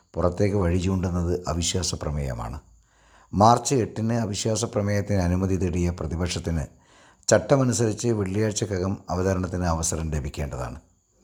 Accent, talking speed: native, 85 wpm